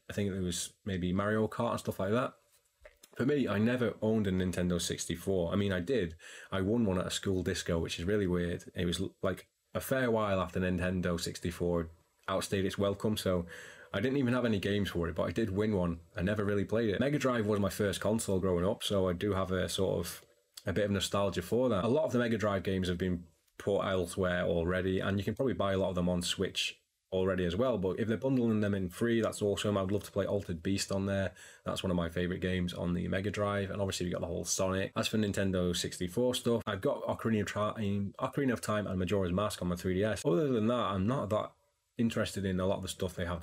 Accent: British